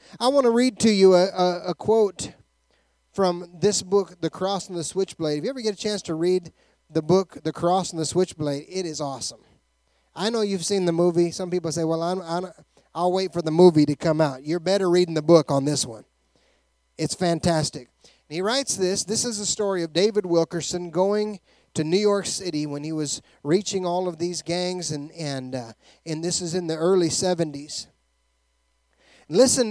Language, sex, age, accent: English, male, 30-49, American